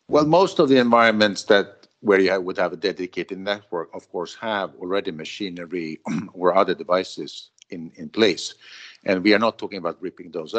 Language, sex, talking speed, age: English, male, 180 wpm, 50-69